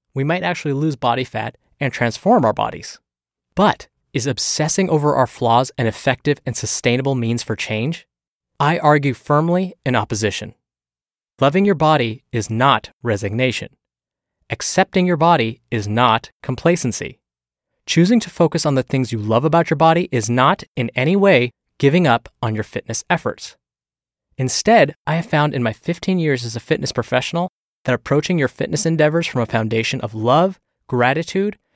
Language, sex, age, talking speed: English, male, 20-39, 160 wpm